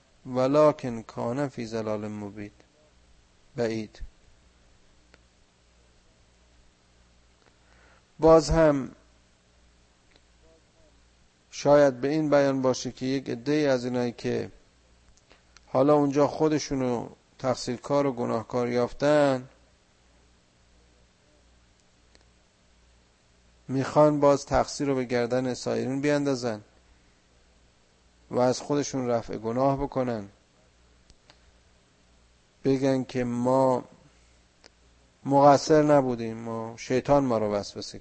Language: Persian